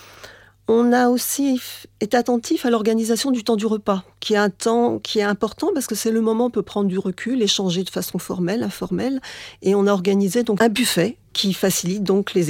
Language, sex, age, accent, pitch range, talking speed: French, female, 40-59, French, 185-245 Hz, 215 wpm